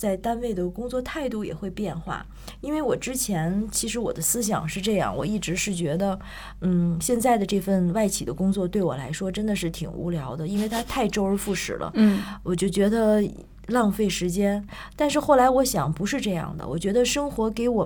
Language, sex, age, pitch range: Chinese, female, 20-39, 180-240 Hz